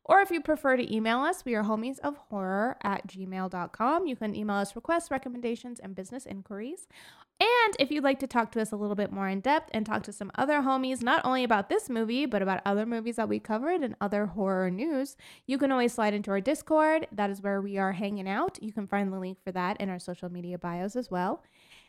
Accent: American